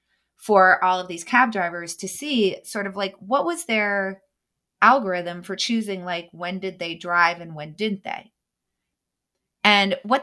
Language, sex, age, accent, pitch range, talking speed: English, female, 30-49, American, 175-220 Hz, 165 wpm